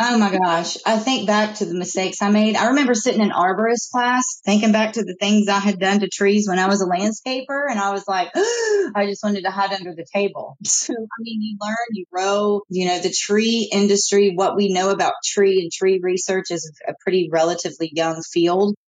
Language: English